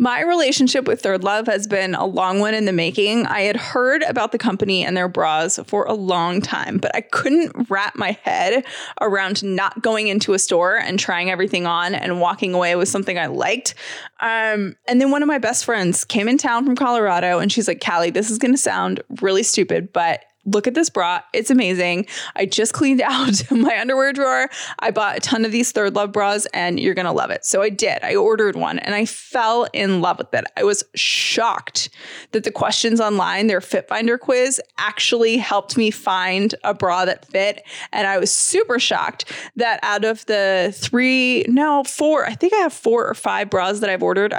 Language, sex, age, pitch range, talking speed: English, female, 20-39, 195-255 Hz, 210 wpm